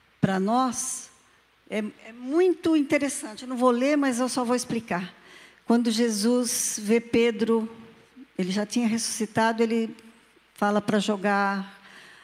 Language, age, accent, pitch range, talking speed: Portuguese, 50-69, Brazilian, 200-265 Hz, 130 wpm